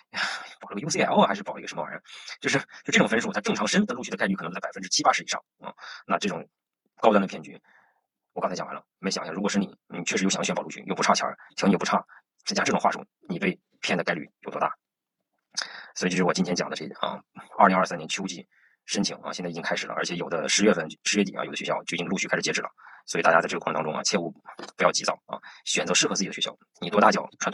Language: Chinese